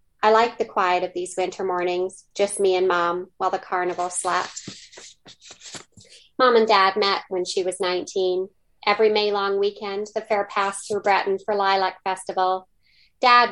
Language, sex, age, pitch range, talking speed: English, female, 30-49, 185-215 Hz, 165 wpm